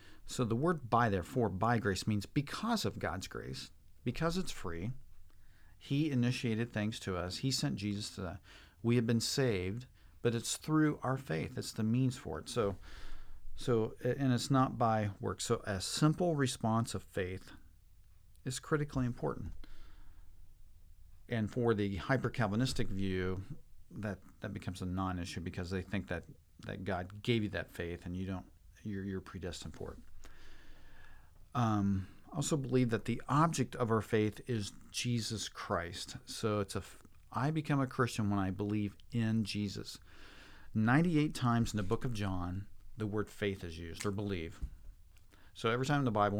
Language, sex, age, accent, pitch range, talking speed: English, male, 40-59, American, 90-115 Hz, 165 wpm